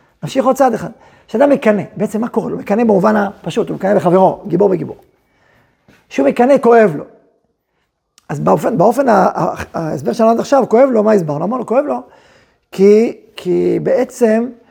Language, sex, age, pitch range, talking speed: Hebrew, male, 40-59, 200-255 Hz, 165 wpm